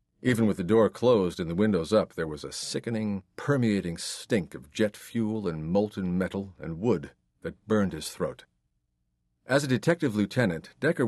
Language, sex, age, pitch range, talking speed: English, male, 50-69, 80-115 Hz, 175 wpm